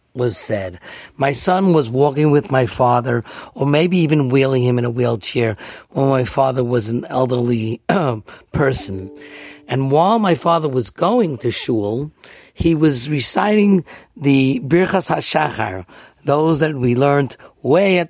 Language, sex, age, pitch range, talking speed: English, male, 50-69, 120-160 Hz, 150 wpm